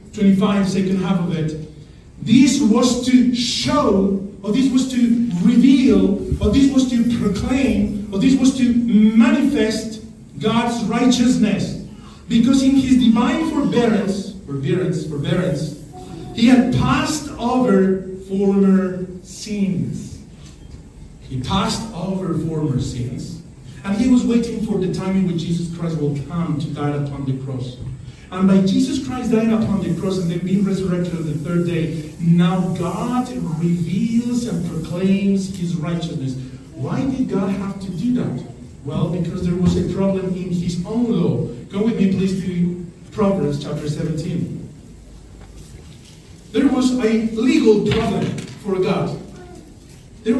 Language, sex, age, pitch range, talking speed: English, male, 40-59, 170-235 Hz, 140 wpm